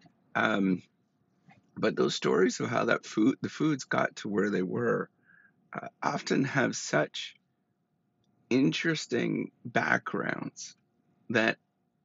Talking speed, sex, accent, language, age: 110 wpm, male, American, English, 40-59